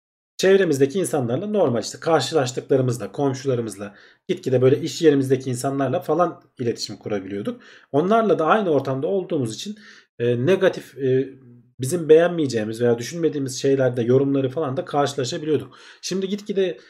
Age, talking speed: 40-59, 120 wpm